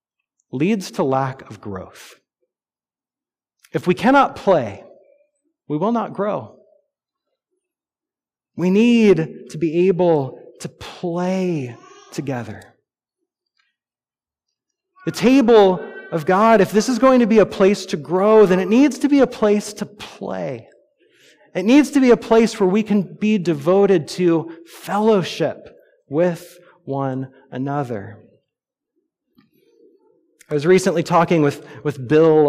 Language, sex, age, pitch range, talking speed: English, male, 30-49, 155-250 Hz, 125 wpm